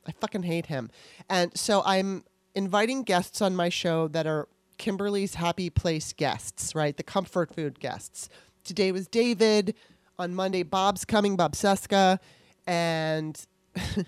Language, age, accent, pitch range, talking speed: English, 30-49, American, 160-195 Hz, 140 wpm